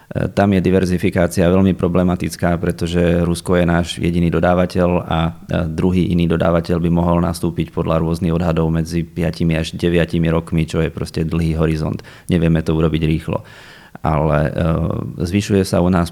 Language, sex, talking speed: Slovak, male, 150 wpm